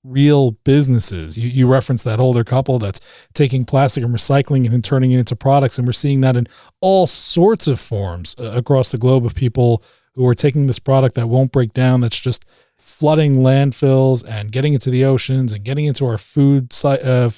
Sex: male